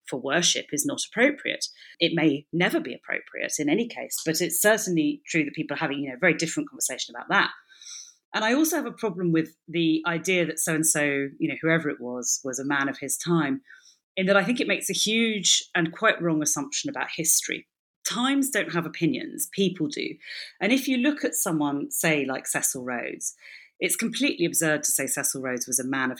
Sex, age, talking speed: female, 30-49, 215 wpm